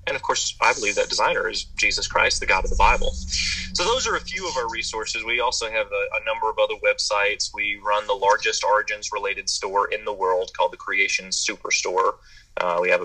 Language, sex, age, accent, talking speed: English, male, 30-49, American, 220 wpm